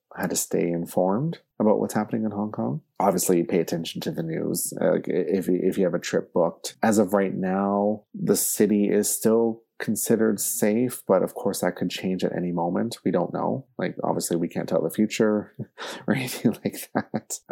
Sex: male